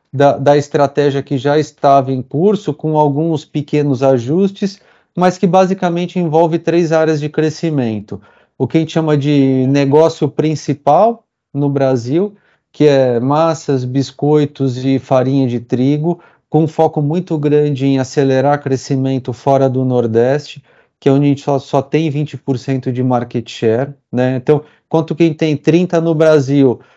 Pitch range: 135-160 Hz